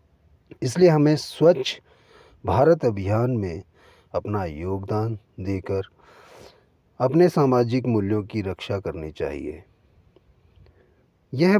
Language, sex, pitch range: Hindi, male, 95-125 Hz